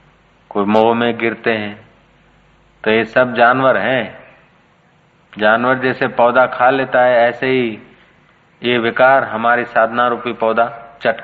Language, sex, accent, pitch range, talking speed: Hindi, male, native, 115-135 Hz, 135 wpm